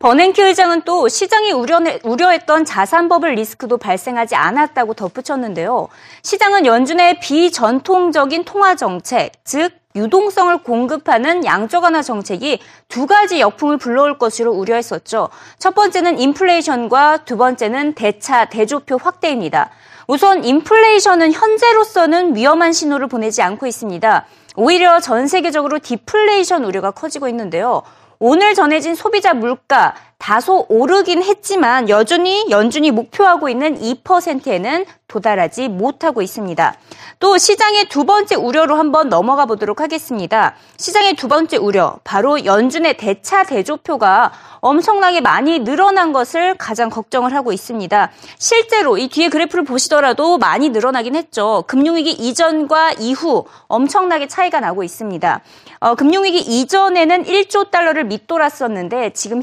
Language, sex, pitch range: Korean, female, 240-355 Hz